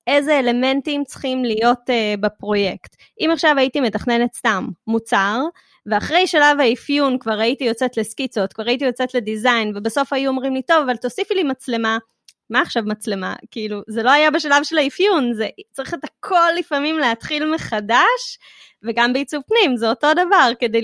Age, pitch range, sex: 20-39, 225-300 Hz, female